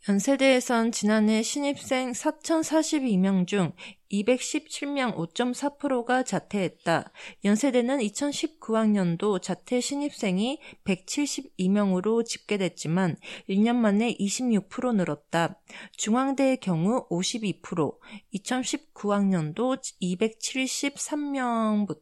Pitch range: 190-265 Hz